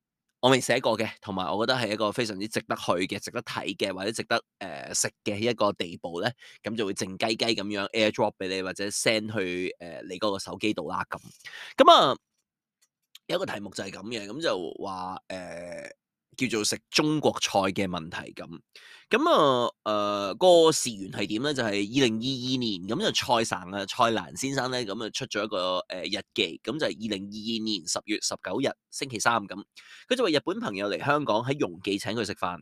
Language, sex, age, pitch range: Chinese, male, 20-39, 100-130 Hz